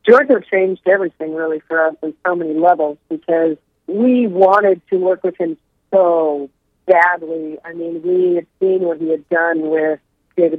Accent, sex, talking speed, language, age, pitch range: American, female, 170 wpm, English, 40-59, 160-195 Hz